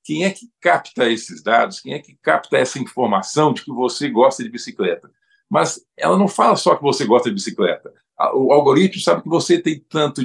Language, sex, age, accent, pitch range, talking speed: Portuguese, male, 50-69, Brazilian, 145-195 Hz, 205 wpm